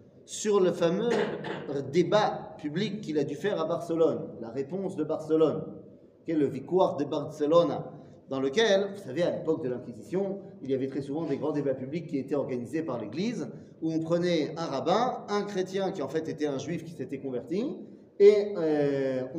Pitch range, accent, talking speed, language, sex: 145-195 Hz, French, 190 wpm, French, male